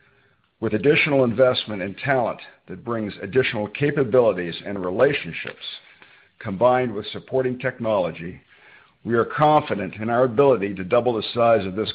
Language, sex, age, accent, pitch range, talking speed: English, male, 50-69, American, 100-120 Hz, 135 wpm